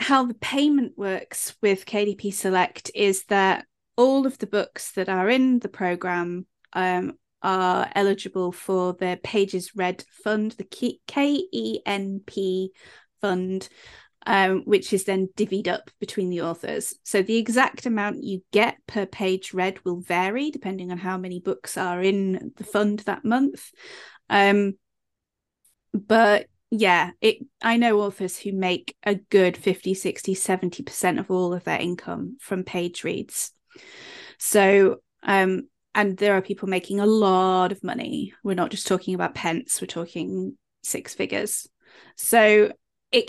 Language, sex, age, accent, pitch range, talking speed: English, female, 30-49, British, 185-220 Hz, 145 wpm